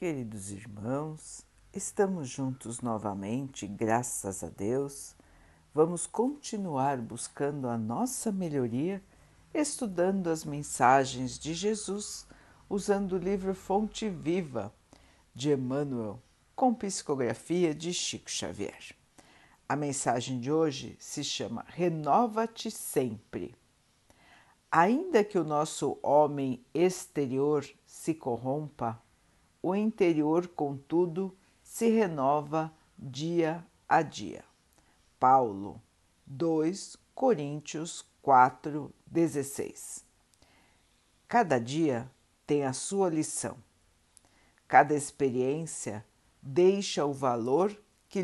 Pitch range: 125-180 Hz